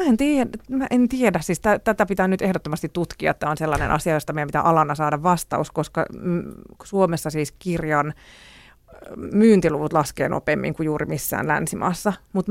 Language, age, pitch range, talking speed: Finnish, 30-49, 150-180 Hz, 170 wpm